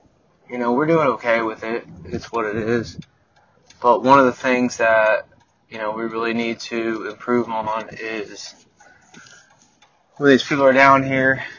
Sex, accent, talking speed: male, American, 160 wpm